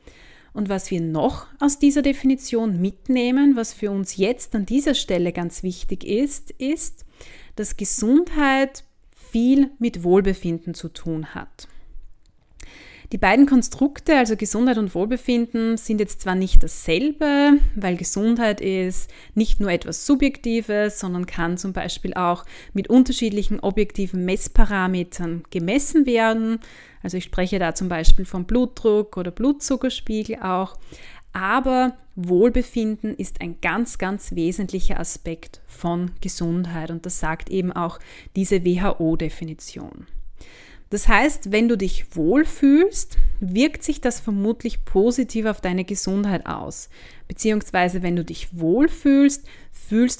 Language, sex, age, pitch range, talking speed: German, female, 30-49, 180-245 Hz, 125 wpm